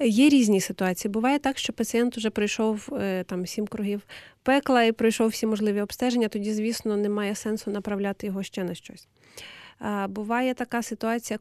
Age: 20-39